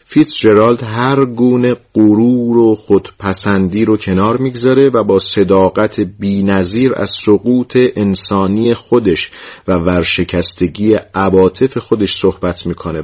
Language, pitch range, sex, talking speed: Persian, 90-110 Hz, male, 110 wpm